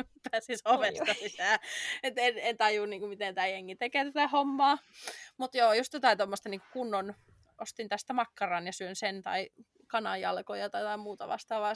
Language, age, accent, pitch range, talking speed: Finnish, 20-39, native, 190-240 Hz, 165 wpm